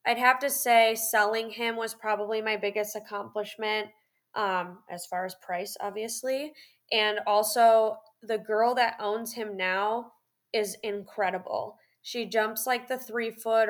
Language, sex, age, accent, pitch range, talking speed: English, female, 20-39, American, 200-235 Hz, 140 wpm